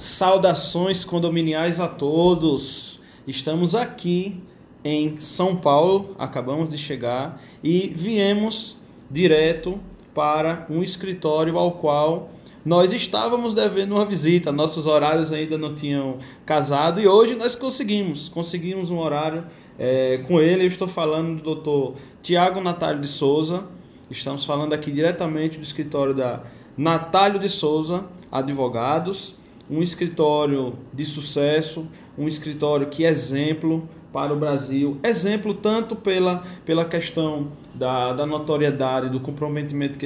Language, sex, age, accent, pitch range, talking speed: Portuguese, male, 20-39, Brazilian, 145-185 Hz, 125 wpm